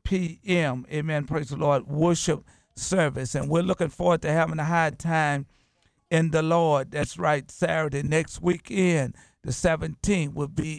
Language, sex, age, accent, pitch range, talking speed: English, male, 50-69, American, 145-165 Hz, 155 wpm